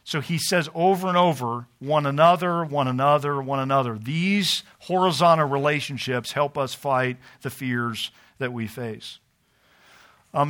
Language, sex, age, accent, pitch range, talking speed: English, male, 50-69, American, 130-165 Hz, 135 wpm